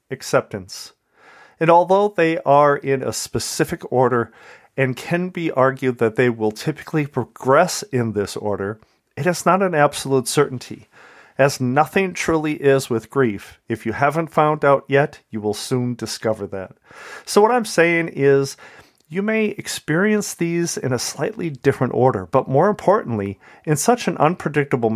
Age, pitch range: 40-59, 120-160 Hz